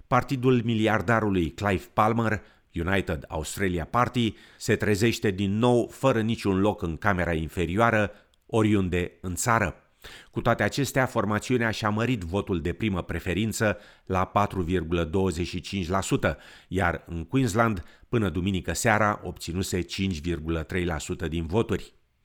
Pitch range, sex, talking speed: 85-115 Hz, male, 115 wpm